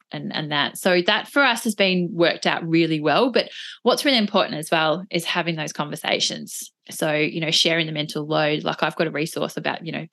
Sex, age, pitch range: female, 20-39, 160-215 Hz